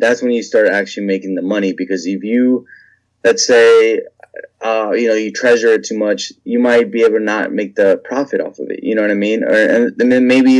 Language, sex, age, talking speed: English, male, 20-39, 240 wpm